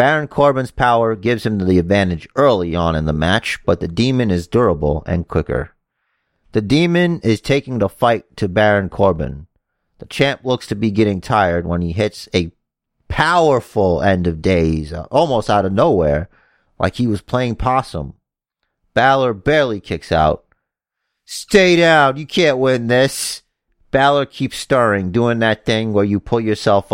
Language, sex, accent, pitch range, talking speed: English, male, American, 90-120 Hz, 160 wpm